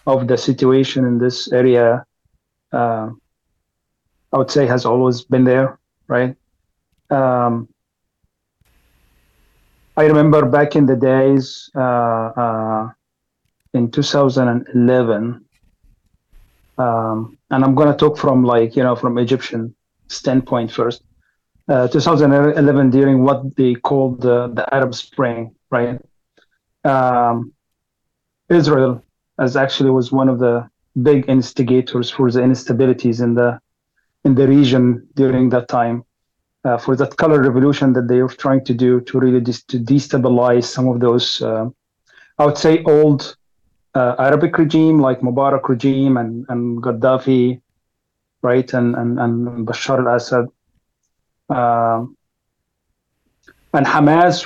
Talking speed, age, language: 125 wpm, 40-59, English